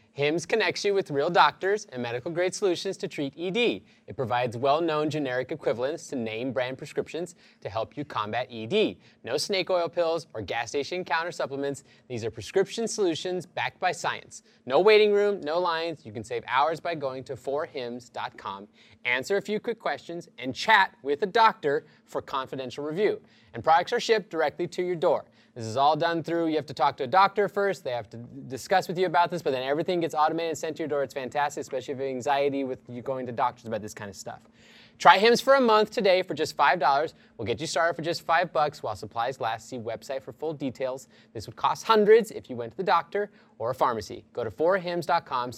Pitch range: 125-180 Hz